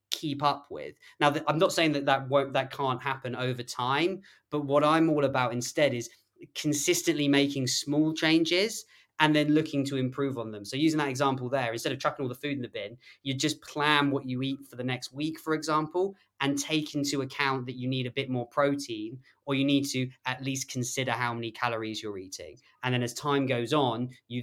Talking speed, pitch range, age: 220 wpm, 120-145 Hz, 20-39